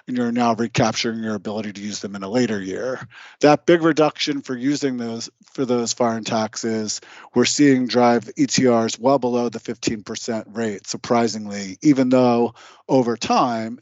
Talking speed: 160 wpm